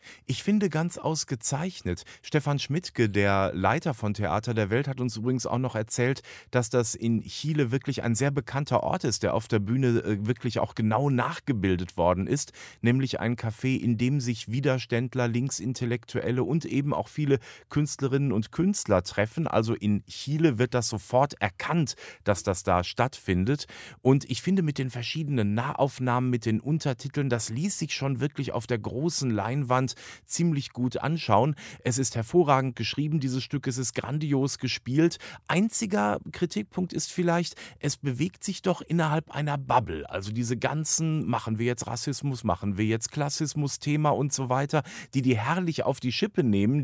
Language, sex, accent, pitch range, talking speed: German, male, German, 115-145 Hz, 165 wpm